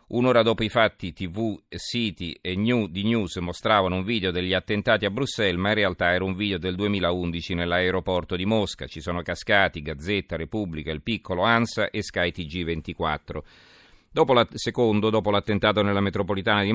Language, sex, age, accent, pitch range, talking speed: Italian, male, 40-59, native, 90-105 Hz, 165 wpm